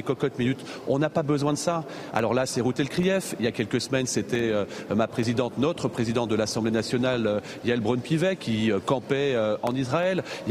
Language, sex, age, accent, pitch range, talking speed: French, male, 40-59, French, 120-150 Hz, 210 wpm